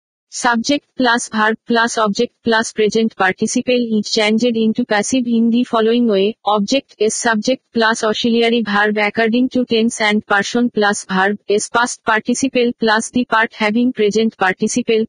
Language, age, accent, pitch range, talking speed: Bengali, 50-69, native, 210-240 Hz, 150 wpm